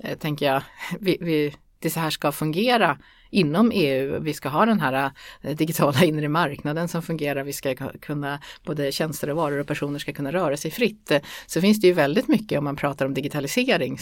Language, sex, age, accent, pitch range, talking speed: Swedish, female, 30-49, native, 150-180 Hz, 195 wpm